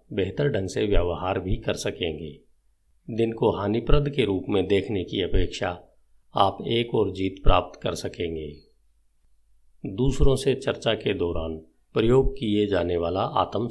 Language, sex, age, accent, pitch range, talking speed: Hindi, male, 50-69, native, 80-105 Hz, 145 wpm